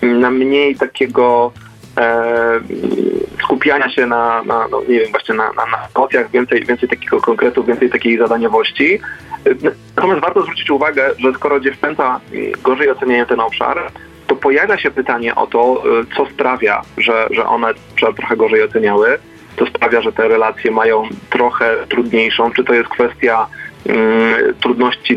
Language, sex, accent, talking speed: Polish, male, native, 150 wpm